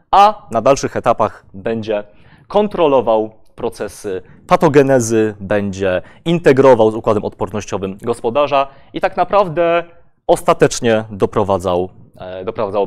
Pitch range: 105-140 Hz